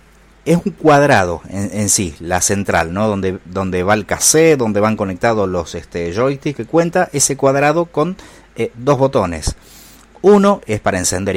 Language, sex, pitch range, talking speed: Spanish, male, 95-130 Hz, 170 wpm